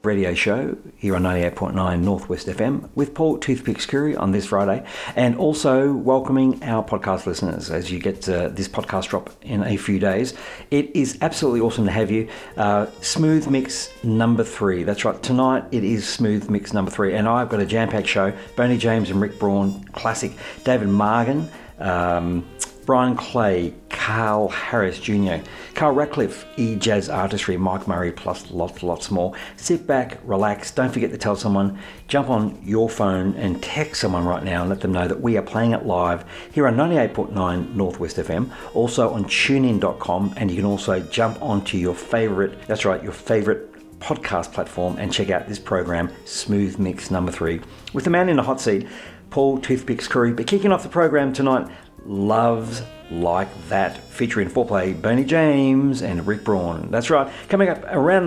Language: English